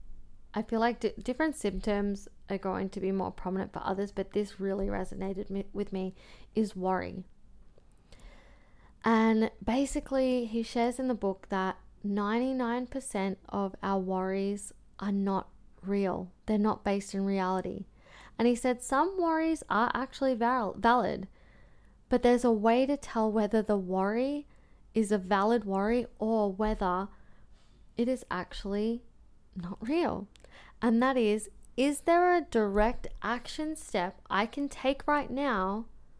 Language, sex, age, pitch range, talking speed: English, female, 20-39, 195-245 Hz, 145 wpm